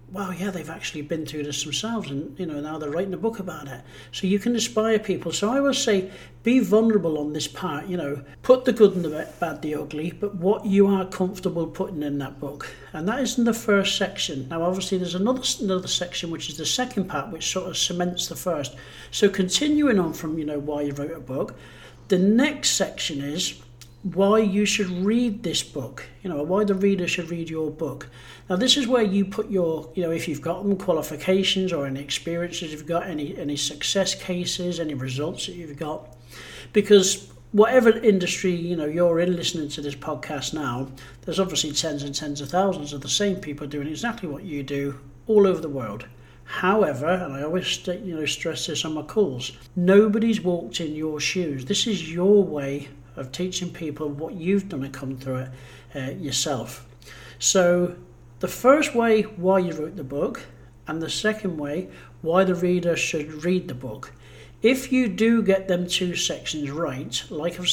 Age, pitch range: 60-79, 145-195 Hz